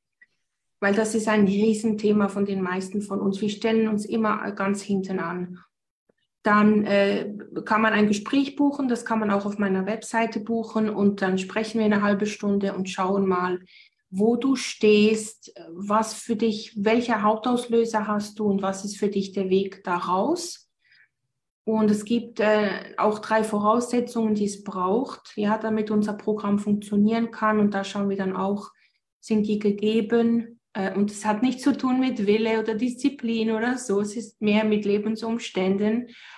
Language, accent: German, German